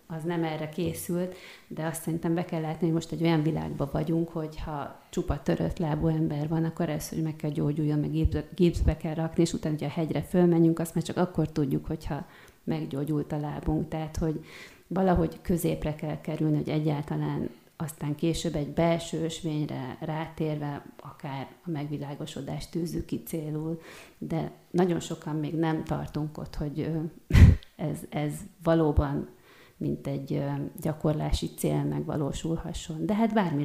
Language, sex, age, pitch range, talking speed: Hungarian, female, 30-49, 150-170 Hz, 150 wpm